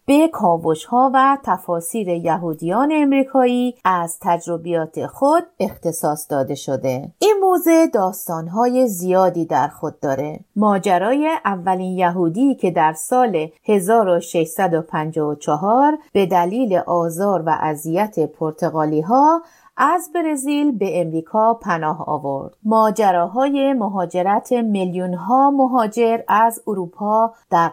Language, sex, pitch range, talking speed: Persian, female, 170-260 Hz, 95 wpm